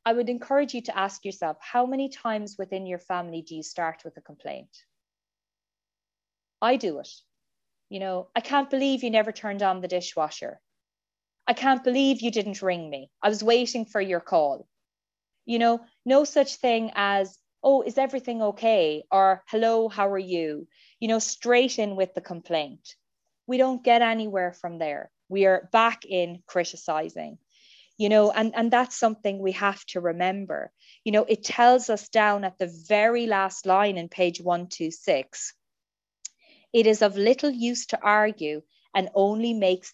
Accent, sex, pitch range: Irish, female, 180-235 Hz